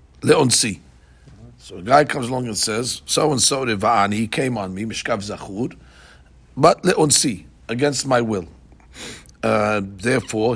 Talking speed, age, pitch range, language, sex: 140 wpm, 50-69, 105-130 Hz, English, male